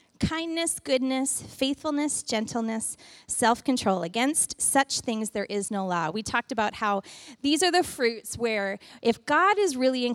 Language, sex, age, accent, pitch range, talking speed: English, female, 30-49, American, 210-280 Hz, 155 wpm